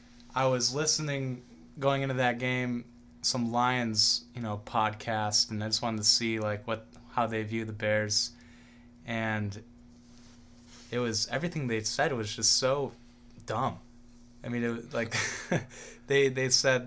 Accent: American